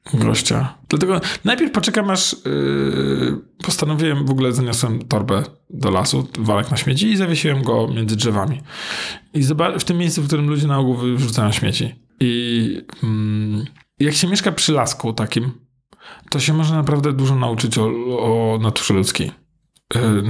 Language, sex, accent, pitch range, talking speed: Polish, male, native, 120-155 Hz, 150 wpm